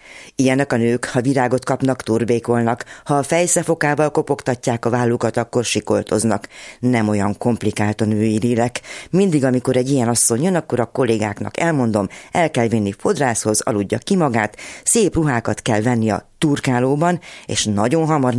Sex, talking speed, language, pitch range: female, 155 wpm, Hungarian, 110-140 Hz